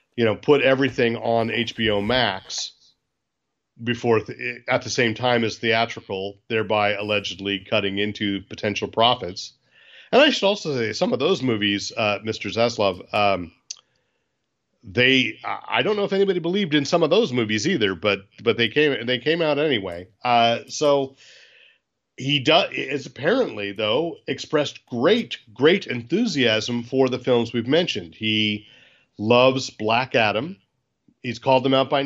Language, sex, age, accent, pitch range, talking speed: English, male, 40-59, American, 110-130 Hz, 150 wpm